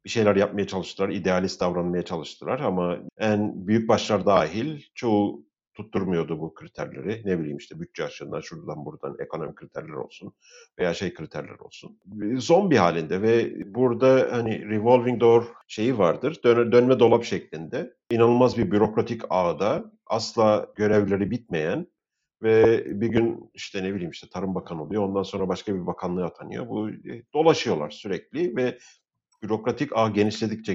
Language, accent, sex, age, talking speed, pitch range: Turkish, native, male, 50-69, 145 wpm, 100-125 Hz